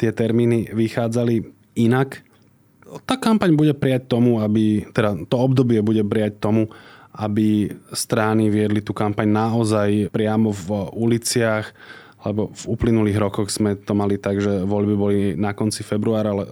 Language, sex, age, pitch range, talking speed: Slovak, male, 20-39, 100-115 Hz, 140 wpm